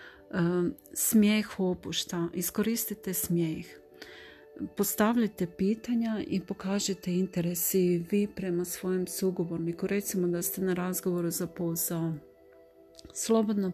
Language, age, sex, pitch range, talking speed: Croatian, 40-59, female, 175-200 Hz, 90 wpm